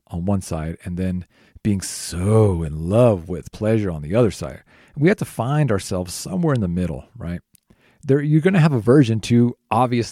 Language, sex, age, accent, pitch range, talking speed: English, male, 40-59, American, 95-125 Hz, 195 wpm